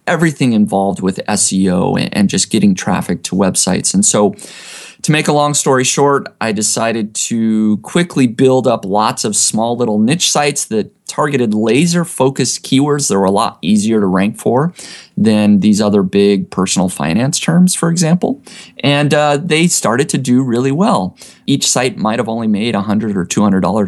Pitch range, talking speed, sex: 110-155 Hz, 170 wpm, male